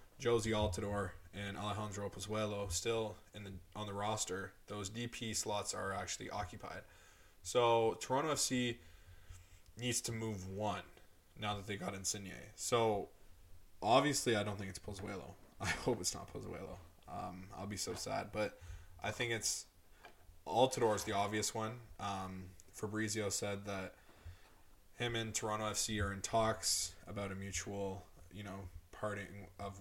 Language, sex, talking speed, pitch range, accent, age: English, male, 145 wpm, 90-105 Hz, American, 20-39